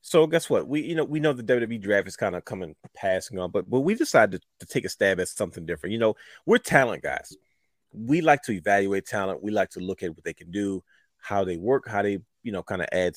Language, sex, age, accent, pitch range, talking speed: English, male, 30-49, American, 95-120 Hz, 265 wpm